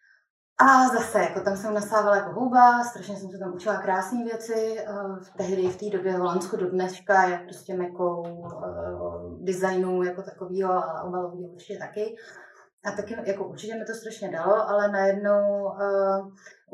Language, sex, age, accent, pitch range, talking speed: Czech, female, 20-39, native, 185-205 Hz, 160 wpm